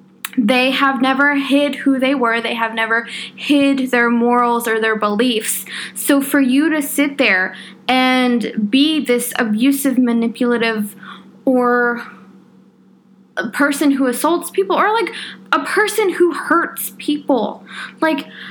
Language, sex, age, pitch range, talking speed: English, female, 20-39, 235-285 Hz, 135 wpm